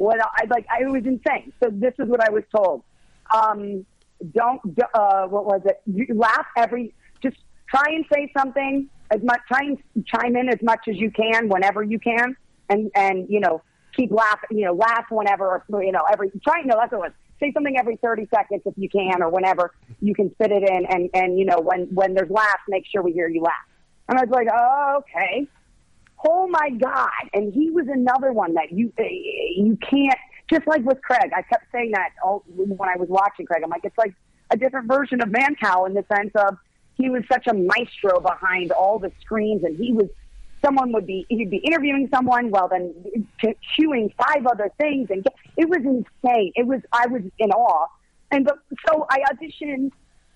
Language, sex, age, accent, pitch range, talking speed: English, female, 40-59, American, 200-265 Hz, 210 wpm